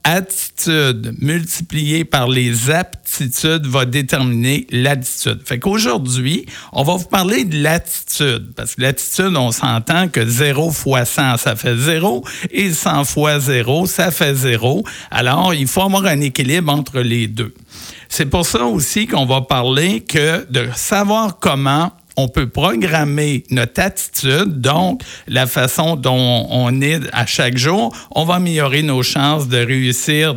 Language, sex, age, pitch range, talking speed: French, male, 50-69, 125-160 Hz, 150 wpm